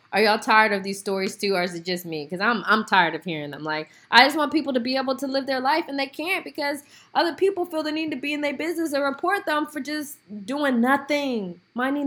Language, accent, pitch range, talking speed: English, American, 185-255 Hz, 265 wpm